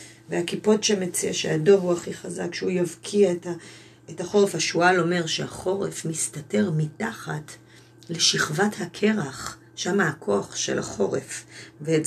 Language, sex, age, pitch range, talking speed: Hebrew, female, 30-49, 120-195 Hz, 110 wpm